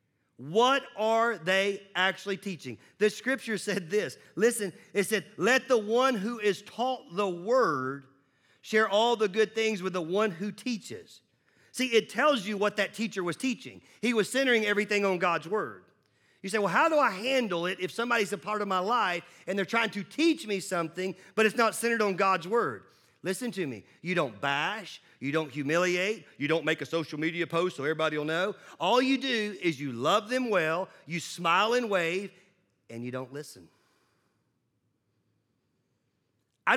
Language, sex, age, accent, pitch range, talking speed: English, male, 40-59, American, 170-225 Hz, 185 wpm